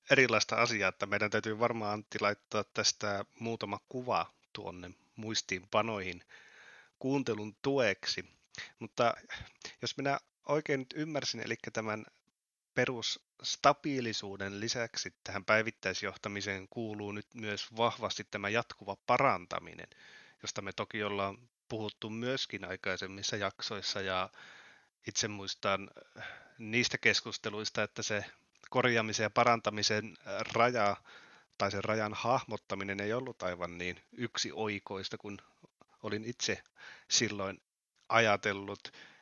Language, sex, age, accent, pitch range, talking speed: Finnish, male, 30-49, native, 100-125 Hz, 105 wpm